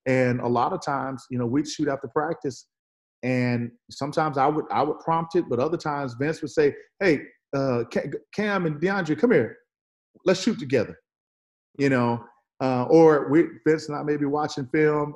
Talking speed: 180 wpm